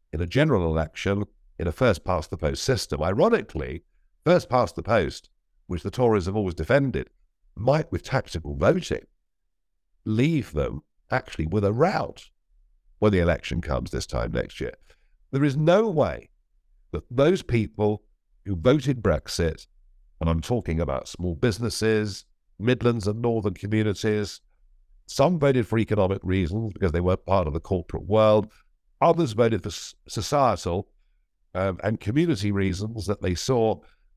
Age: 60-79